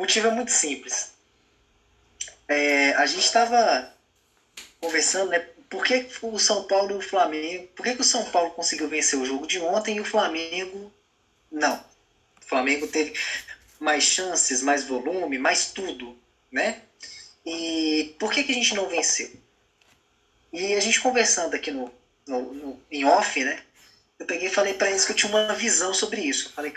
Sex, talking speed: male, 175 wpm